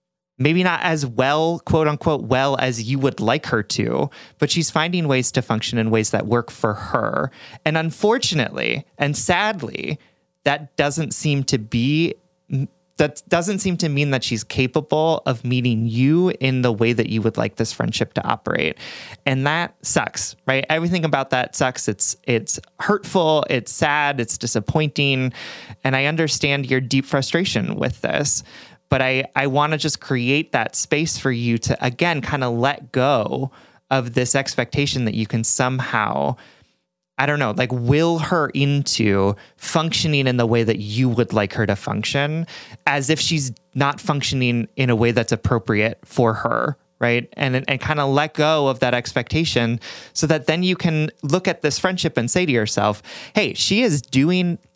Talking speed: 175 wpm